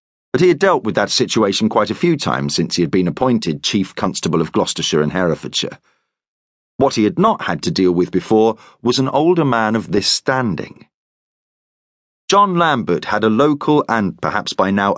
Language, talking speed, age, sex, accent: English, 190 wpm, 40-59, male, British